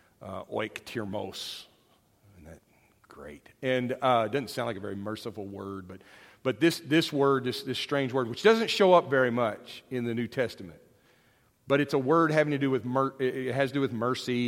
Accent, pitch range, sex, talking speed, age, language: American, 125-170 Hz, male, 200 wpm, 40-59, English